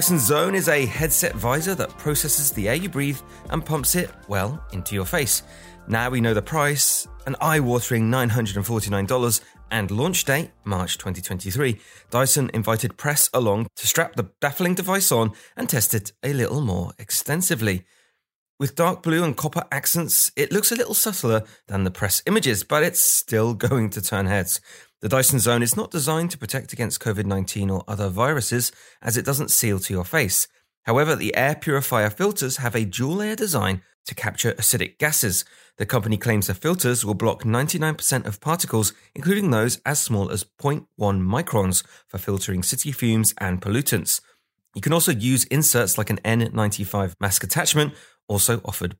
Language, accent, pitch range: English, British, 100-145 Hz